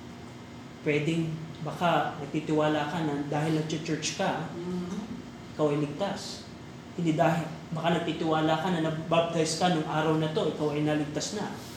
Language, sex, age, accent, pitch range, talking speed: Filipino, male, 30-49, native, 150-175 Hz, 145 wpm